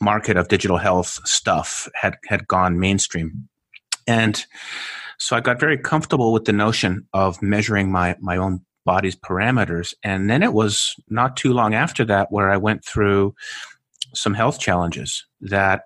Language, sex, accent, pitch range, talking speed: English, male, American, 95-110 Hz, 160 wpm